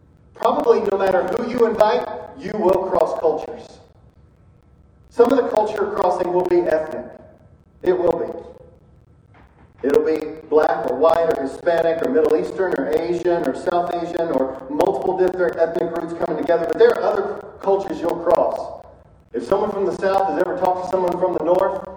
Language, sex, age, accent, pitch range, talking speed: English, male, 40-59, American, 165-220 Hz, 170 wpm